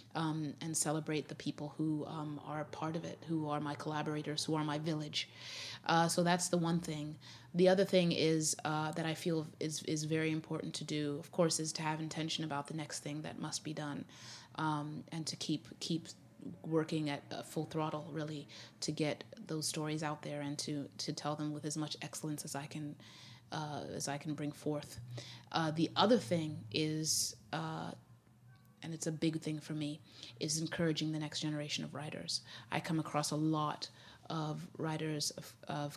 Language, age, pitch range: English, 30-49, 145-165 Hz